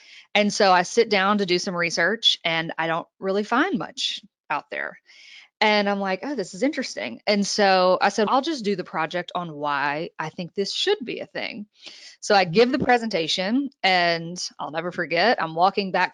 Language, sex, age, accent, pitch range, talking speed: English, female, 20-39, American, 180-245 Hz, 200 wpm